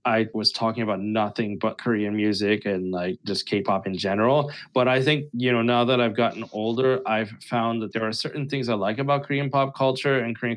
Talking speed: 220 wpm